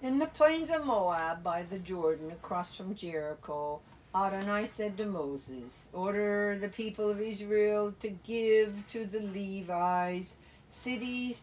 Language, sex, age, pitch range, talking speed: English, female, 60-79, 180-220 Hz, 135 wpm